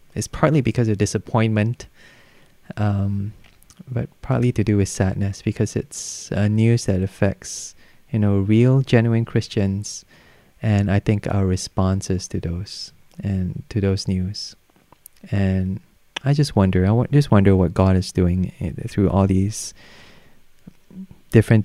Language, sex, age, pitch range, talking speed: English, male, 20-39, 95-115 Hz, 135 wpm